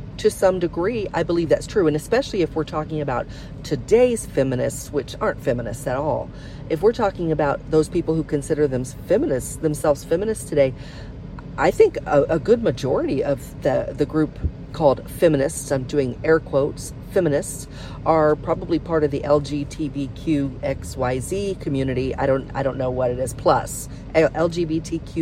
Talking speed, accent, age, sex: 160 wpm, American, 40-59, female